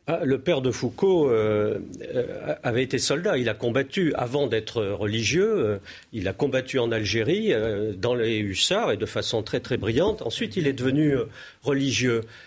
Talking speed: 170 wpm